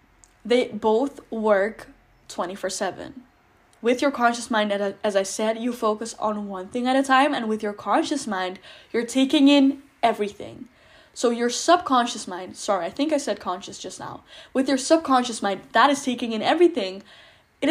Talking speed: 170 wpm